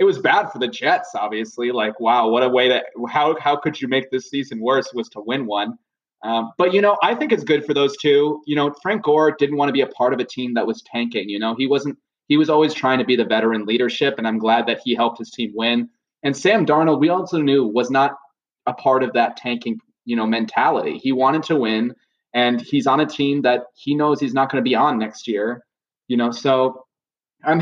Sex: male